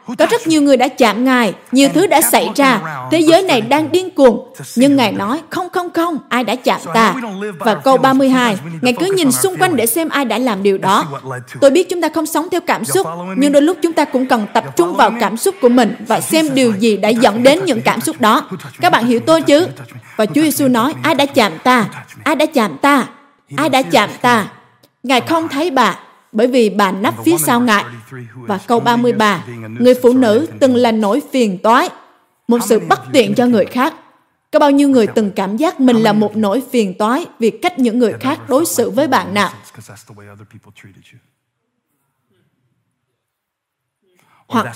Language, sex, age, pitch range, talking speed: Vietnamese, female, 20-39, 210-285 Hz, 205 wpm